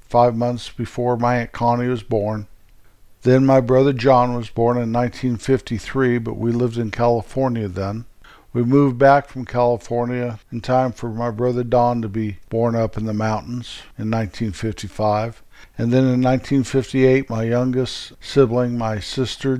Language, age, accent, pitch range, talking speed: English, 50-69, American, 110-130 Hz, 155 wpm